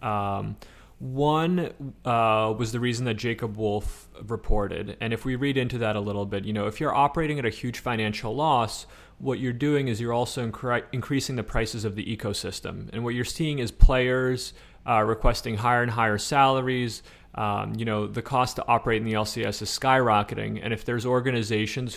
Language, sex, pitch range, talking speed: English, male, 110-125 Hz, 190 wpm